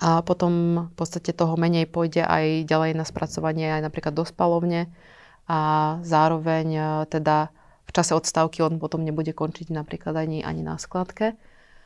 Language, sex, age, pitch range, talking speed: Slovak, female, 30-49, 155-170 Hz, 145 wpm